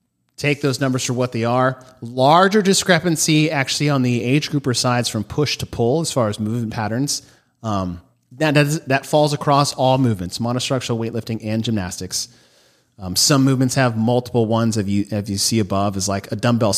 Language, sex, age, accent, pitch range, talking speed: English, male, 30-49, American, 105-140 Hz, 190 wpm